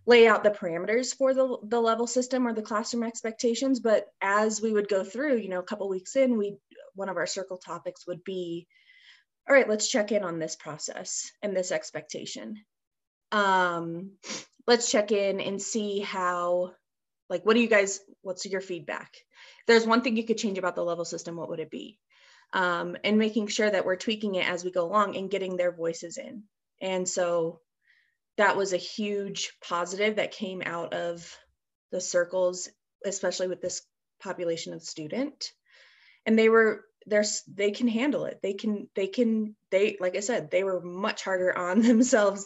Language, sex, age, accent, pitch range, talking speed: English, female, 20-39, American, 180-235 Hz, 185 wpm